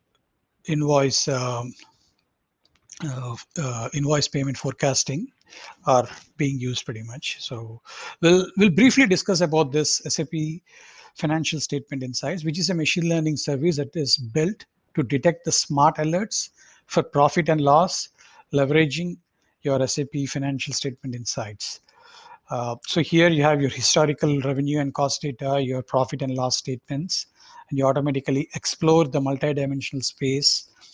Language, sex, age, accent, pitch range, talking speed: English, male, 60-79, Indian, 135-160 Hz, 135 wpm